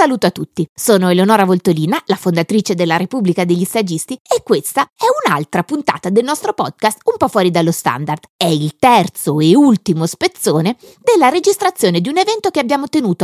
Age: 30-49